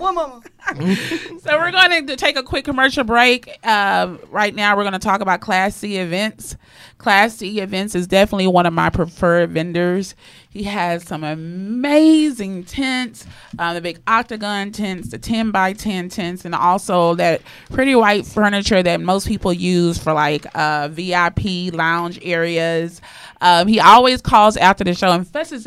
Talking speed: 165 wpm